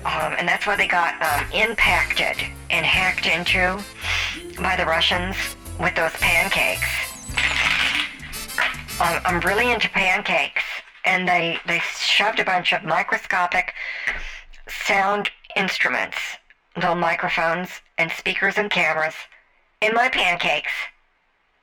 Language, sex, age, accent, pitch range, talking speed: English, male, 50-69, American, 140-185 Hz, 115 wpm